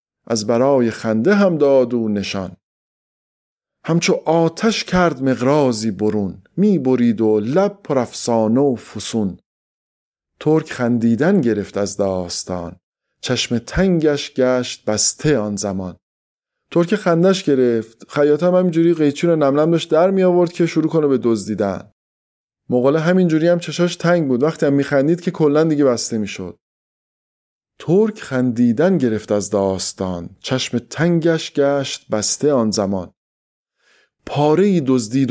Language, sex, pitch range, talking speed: English, male, 110-160 Hz, 130 wpm